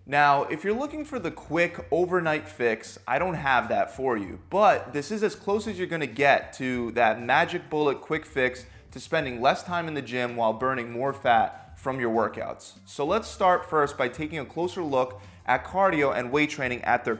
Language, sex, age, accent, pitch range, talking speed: English, male, 20-39, American, 125-170 Hz, 215 wpm